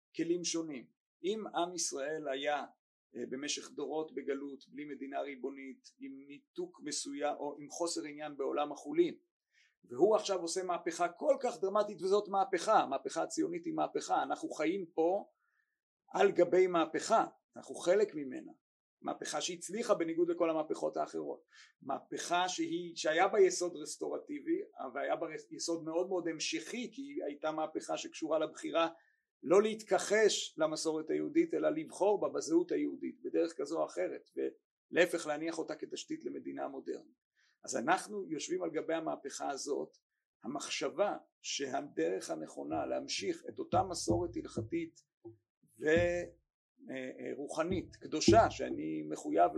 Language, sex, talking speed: Hebrew, male, 125 wpm